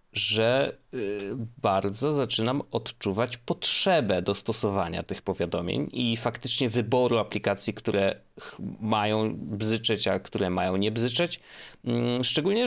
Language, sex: Polish, male